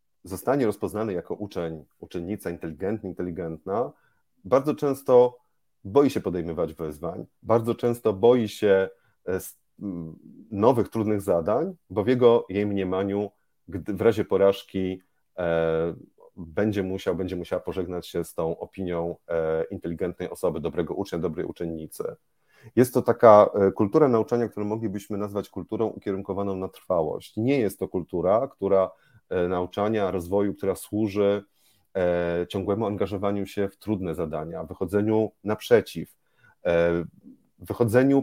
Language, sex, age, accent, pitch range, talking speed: Polish, male, 30-49, native, 85-110 Hz, 120 wpm